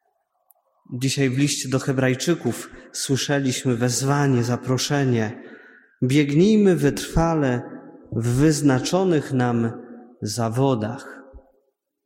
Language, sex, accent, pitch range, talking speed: Polish, male, native, 125-165 Hz, 70 wpm